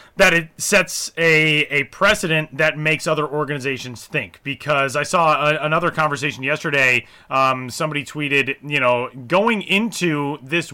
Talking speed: 140 wpm